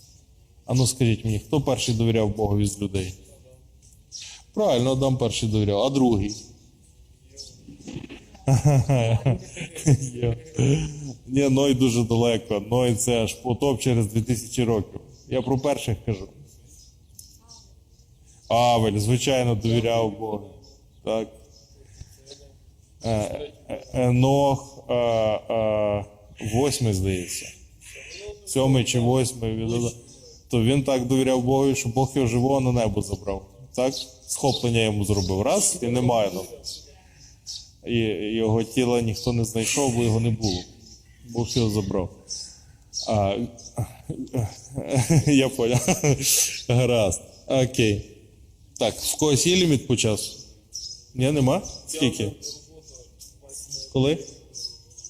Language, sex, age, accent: Ukrainian, male, 20-39, native